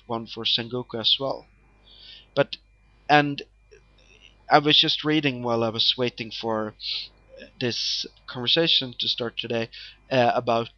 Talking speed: 130 wpm